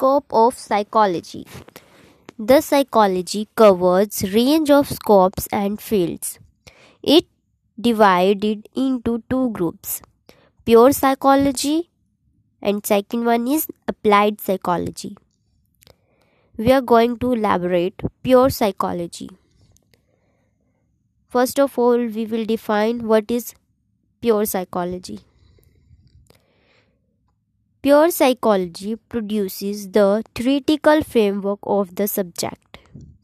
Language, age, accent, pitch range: English, 20-39, Indian, 195-250 Hz